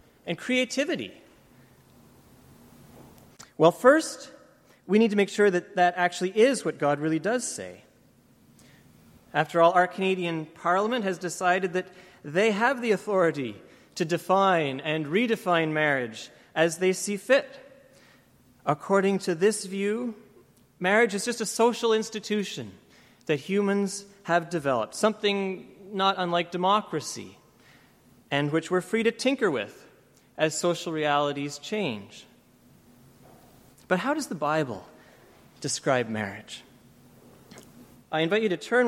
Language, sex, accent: English, male, American